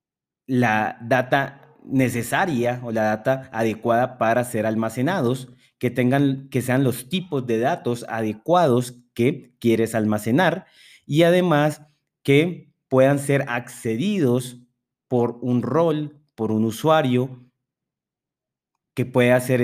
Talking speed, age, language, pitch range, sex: 115 wpm, 30-49, Spanish, 115-140 Hz, male